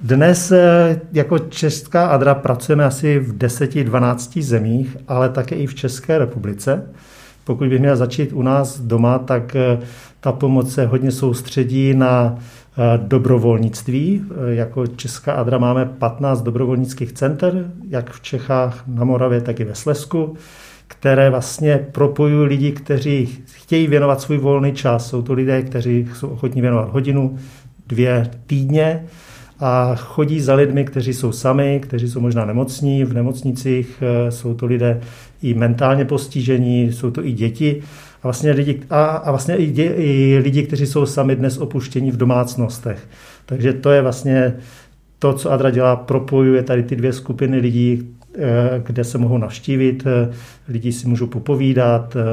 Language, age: Czech, 50-69